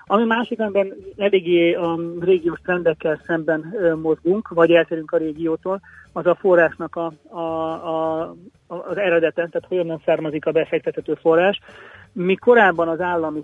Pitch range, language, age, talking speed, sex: 155-175 Hz, Hungarian, 30-49, 145 wpm, male